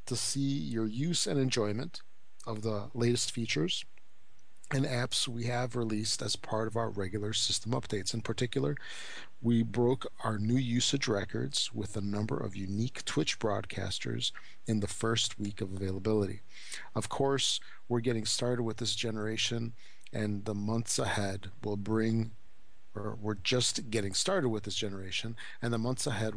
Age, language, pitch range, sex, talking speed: 50-69, English, 105-120 Hz, male, 155 wpm